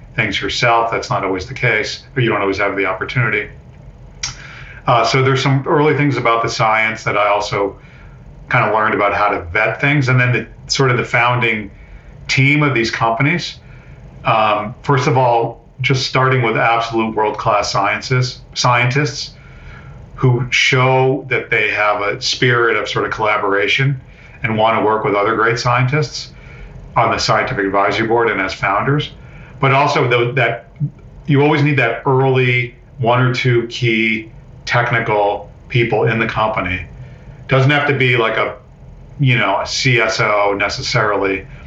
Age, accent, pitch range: 50-69, American, 110-135 Hz